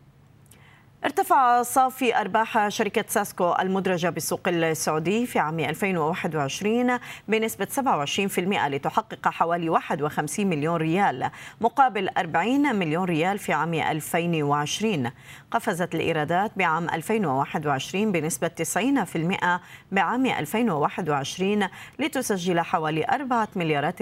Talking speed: 90 wpm